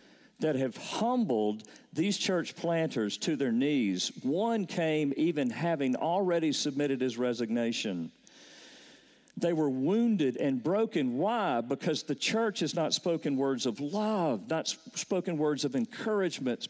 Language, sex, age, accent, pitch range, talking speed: English, male, 50-69, American, 135-225 Hz, 135 wpm